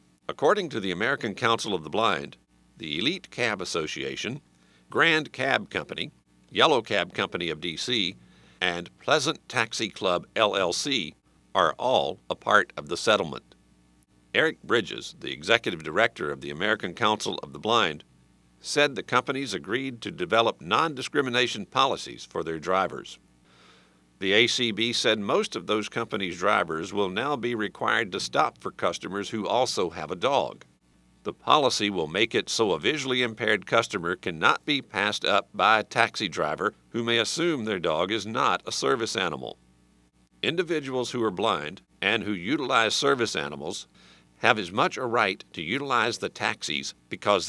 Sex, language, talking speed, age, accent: male, English, 155 wpm, 50-69, American